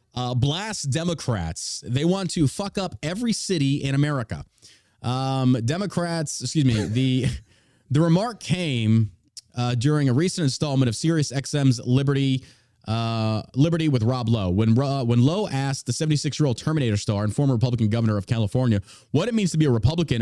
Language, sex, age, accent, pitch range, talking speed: English, male, 30-49, American, 115-145 Hz, 170 wpm